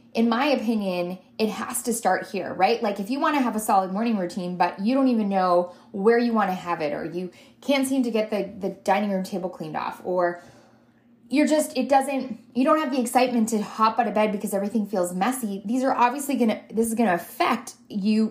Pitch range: 190-250 Hz